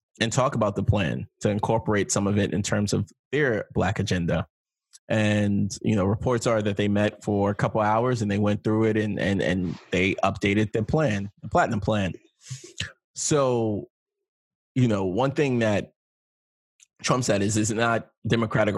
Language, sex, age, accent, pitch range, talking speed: English, male, 20-39, American, 100-115 Hz, 180 wpm